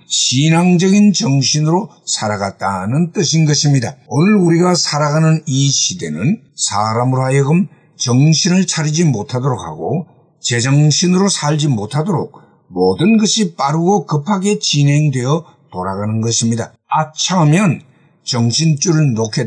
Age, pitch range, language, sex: 50-69, 125-170 Hz, Korean, male